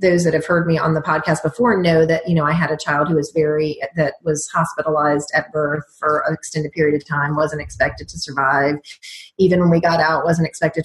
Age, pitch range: 30-49, 155-185 Hz